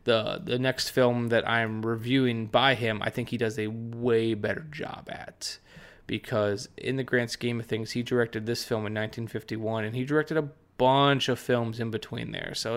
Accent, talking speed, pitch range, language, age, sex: American, 195 wpm, 110-135 Hz, English, 20-39, male